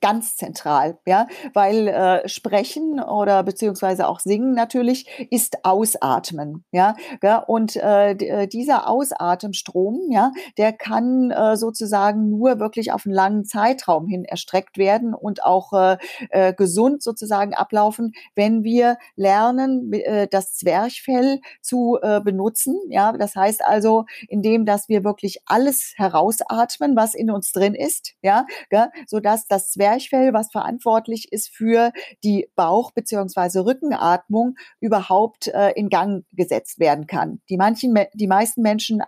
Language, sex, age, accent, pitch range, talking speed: German, female, 40-59, German, 195-235 Hz, 135 wpm